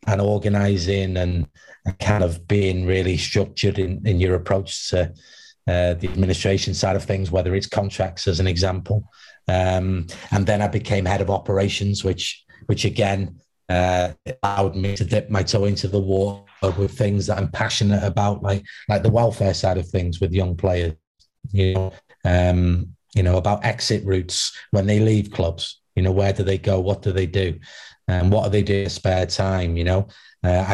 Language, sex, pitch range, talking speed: English, male, 95-105 Hz, 185 wpm